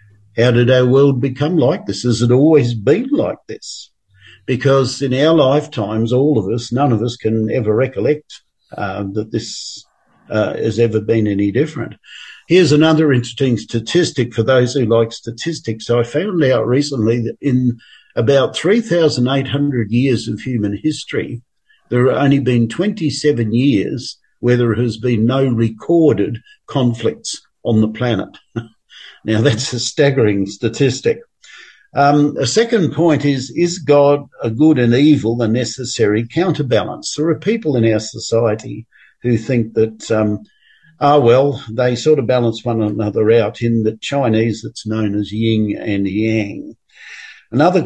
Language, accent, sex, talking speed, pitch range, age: English, Australian, male, 150 wpm, 110-145 Hz, 50-69